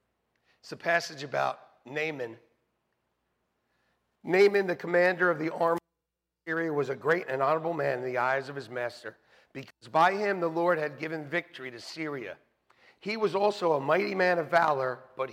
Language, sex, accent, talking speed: English, male, American, 170 wpm